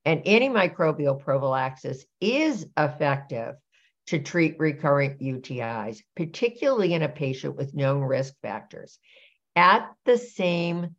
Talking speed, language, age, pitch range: 110 wpm, English, 60-79, 140-180 Hz